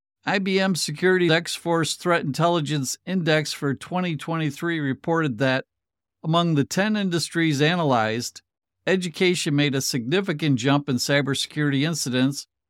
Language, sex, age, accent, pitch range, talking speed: English, male, 50-69, American, 130-165 Hz, 110 wpm